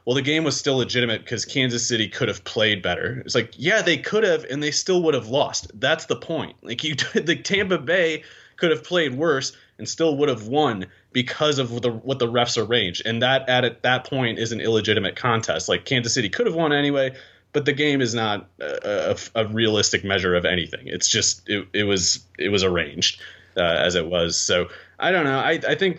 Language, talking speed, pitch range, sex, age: English, 225 wpm, 100-135 Hz, male, 30-49